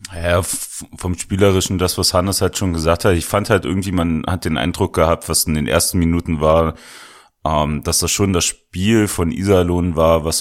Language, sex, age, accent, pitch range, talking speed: German, male, 30-49, German, 80-95 Hz, 195 wpm